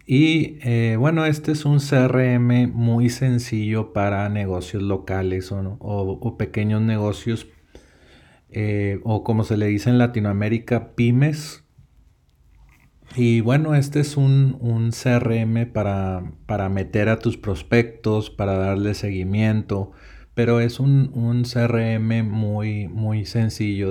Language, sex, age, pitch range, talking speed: Spanish, male, 40-59, 95-115 Hz, 125 wpm